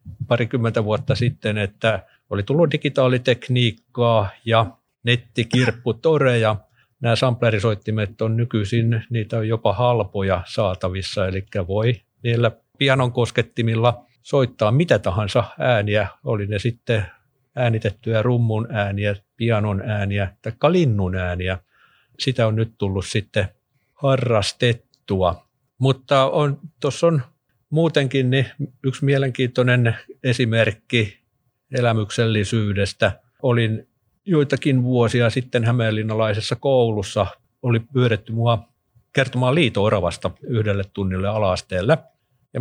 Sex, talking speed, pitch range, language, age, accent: male, 95 wpm, 110-130 Hz, Finnish, 50-69, native